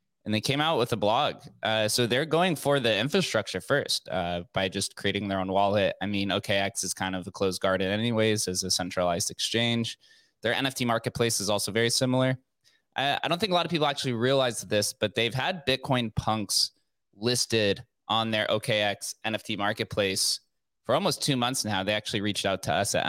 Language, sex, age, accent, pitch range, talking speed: English, male, 20-39, American, 95-115 Hz, 200 wpm